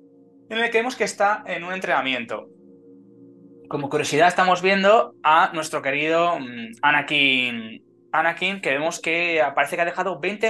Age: 20-39